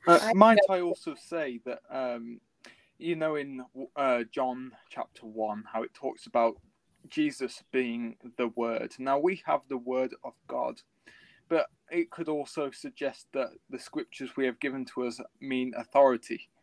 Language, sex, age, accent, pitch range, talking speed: English, male, 20-39, British, 125-155 Hz, 160 wpm